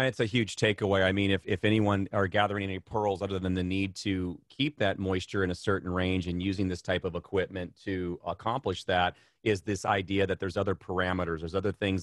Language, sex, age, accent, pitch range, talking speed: English, male, 30-49, American, 90-110 Hz, 225 wpm